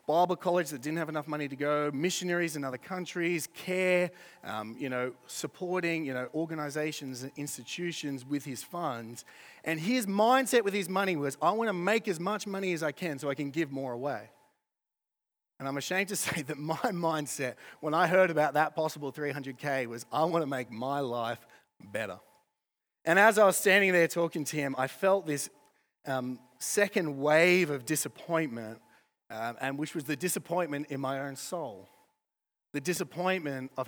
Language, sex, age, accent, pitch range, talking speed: English, male, 30-49, Australian, 130-175 Hz, 180 wpm